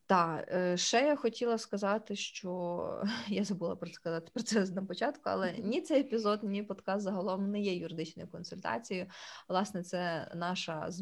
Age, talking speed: 20-39, 150 wpm